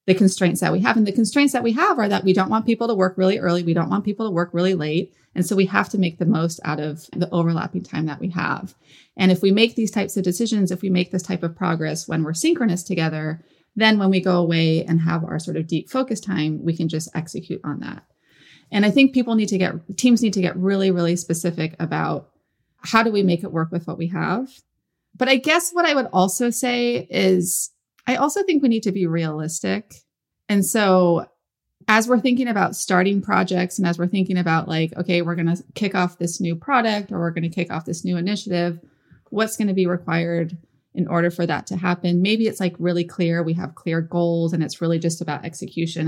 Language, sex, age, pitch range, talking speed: English, female, 30-49, 165-200 Hz, 240 wpm